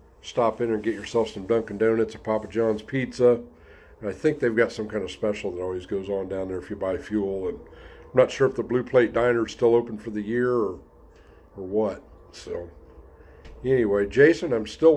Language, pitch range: English, 100-120 Hz